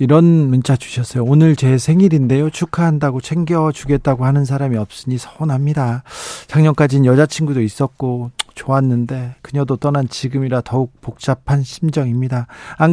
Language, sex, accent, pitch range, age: Korean, male, native, 130-165 Hz, 40-59